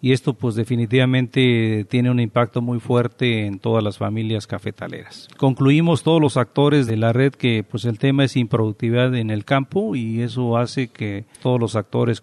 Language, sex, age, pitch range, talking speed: Spanish, male, 50-69, 110-130 Hz, 180 wpm